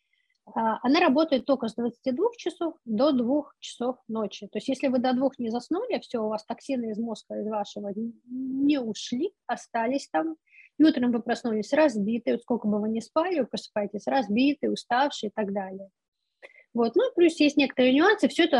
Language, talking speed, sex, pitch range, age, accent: Russian, 180 wpm, female, 215-275 Hz, 20-39, native